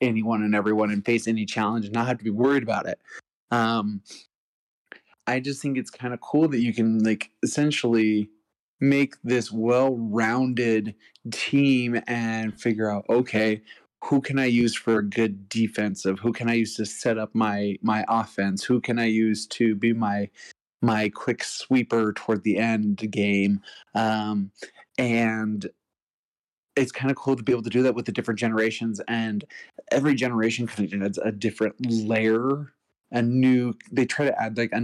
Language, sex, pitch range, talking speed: English, male, 105-120 Hz, 175 wpm